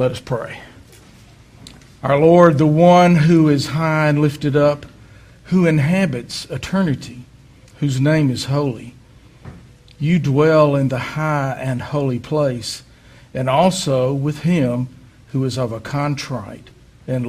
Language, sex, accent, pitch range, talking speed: English, male, American, 120-145 Hz, 130 wpm